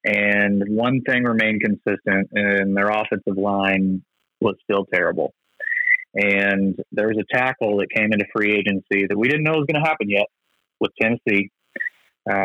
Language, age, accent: English, 30-49, American